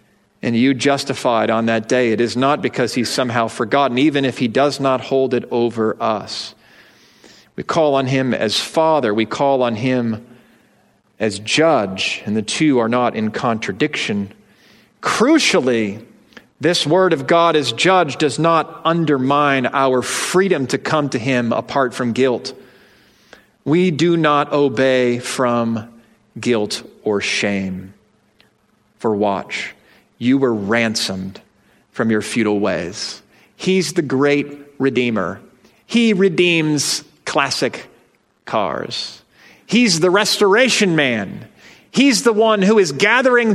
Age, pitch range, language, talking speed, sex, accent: 40-59, 125-180 Hz, English, 130 wpm, male, American